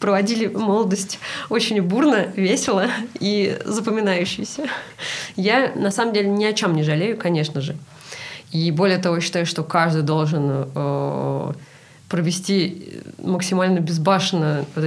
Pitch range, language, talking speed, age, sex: 160-200 Hz, Russian, 125 wpm, 20-39, female